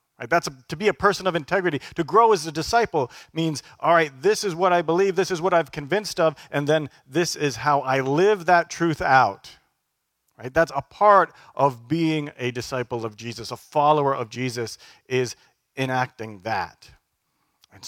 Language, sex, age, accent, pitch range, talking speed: English, male, 40-59, American, 125-170 Hz, 180 wpm